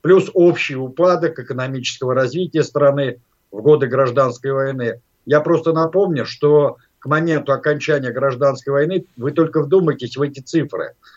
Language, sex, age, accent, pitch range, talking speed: Russian, male, 50-69, native, 130-160 Hz, 135 wpm